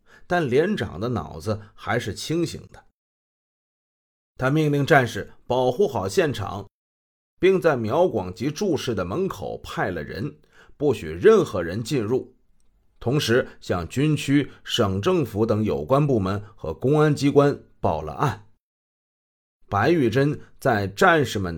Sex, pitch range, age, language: male, 105-150 Hz, 30-49, Chinese